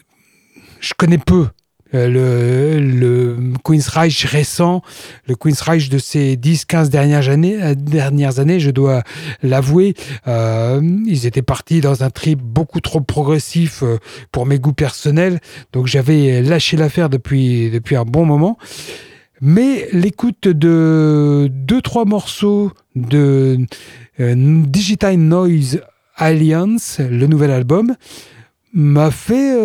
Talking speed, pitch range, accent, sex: 125 wpm, 135-175 Hz, French, male